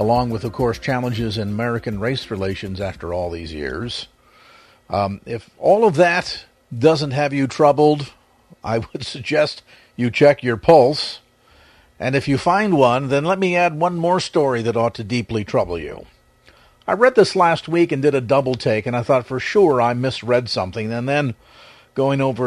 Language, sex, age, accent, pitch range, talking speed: English, male, 50-69, American, 120-165 Hz, 185 wpm